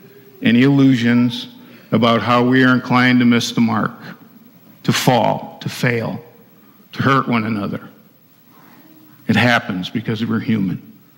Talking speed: 130 wpm